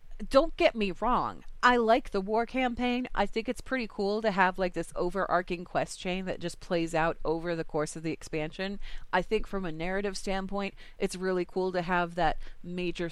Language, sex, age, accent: English, female, 30-49, American